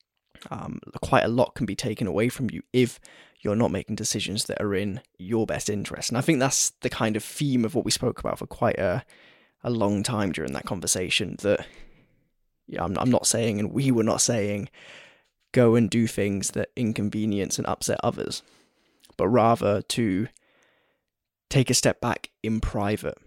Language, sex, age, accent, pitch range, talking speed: English, male, 10-29, British, 100-120 Hz, 185 wpm